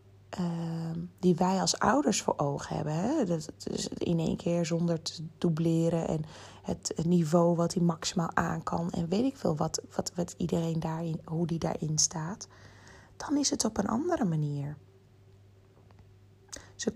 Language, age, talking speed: Dutch, 30-49, 160 wpm